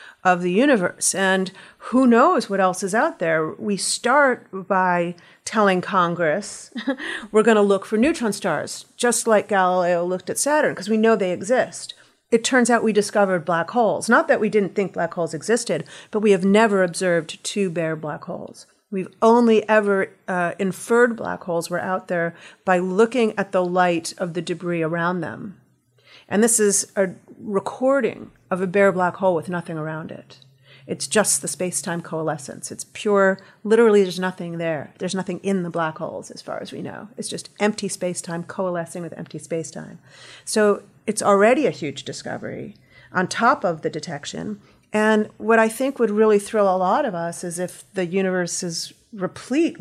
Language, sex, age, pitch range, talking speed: English, female, 40-59, 175-215 Hz, 180 wpm